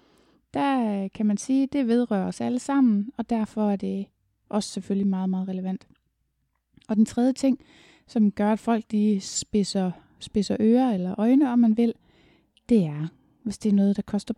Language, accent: Danish, native